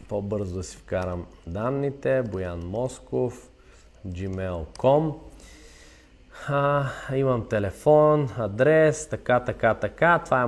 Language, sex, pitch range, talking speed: Bulgarian, male, 105-135 Hz, 90 wpm